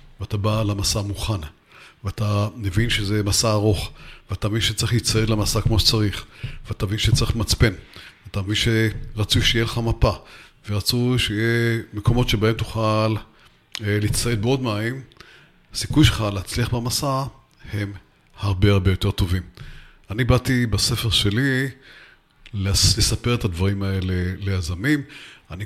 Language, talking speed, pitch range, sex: English, 125 wpm, 105-125 Hz, male